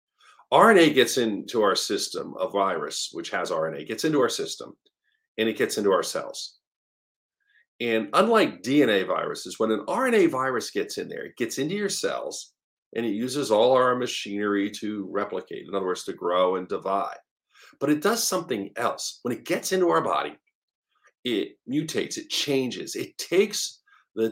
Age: 50-69